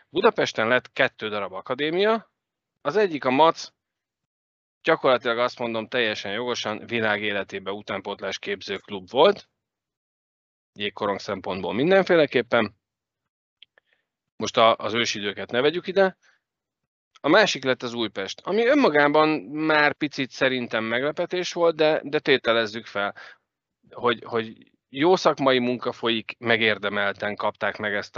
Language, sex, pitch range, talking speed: Hungarian, male, 105-140 Hz, 115 wpm